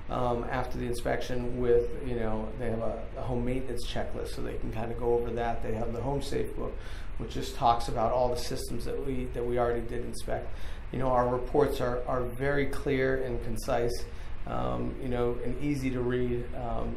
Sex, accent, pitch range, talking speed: male, American, 120-130 Hz, 210 wpm